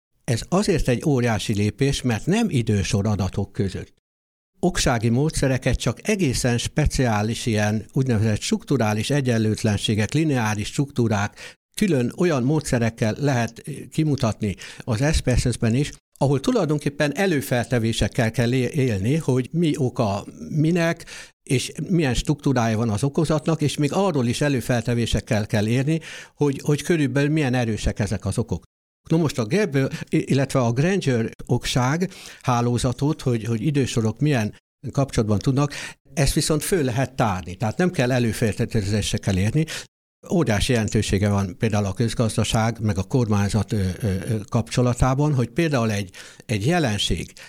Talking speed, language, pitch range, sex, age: 125 wpm, Hungarian, 110-145 Hz, male, 60-79